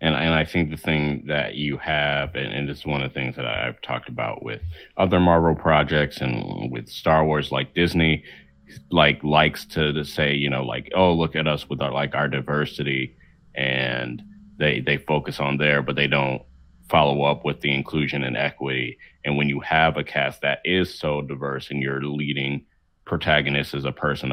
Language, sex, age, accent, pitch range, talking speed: English, male, 30-49, American, 70-85 Hz, 195 wpm